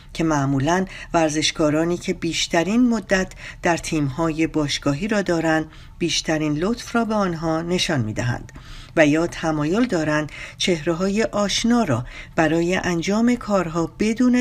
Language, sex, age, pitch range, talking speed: Persian, female, 50-69, 150-200 Hz, 120 wpm